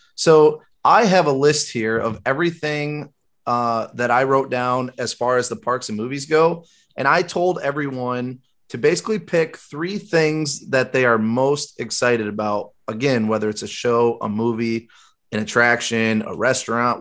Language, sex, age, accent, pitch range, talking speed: English, male, 30-49, American, 120-155 Hz, 165 wpm